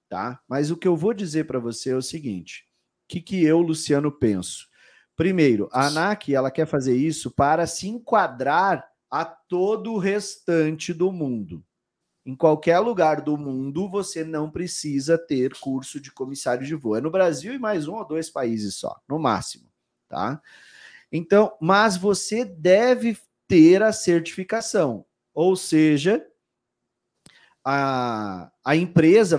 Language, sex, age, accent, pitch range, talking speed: Portuguese, male, 40-59, Brazilian, 145-200 Hz, 150 wpm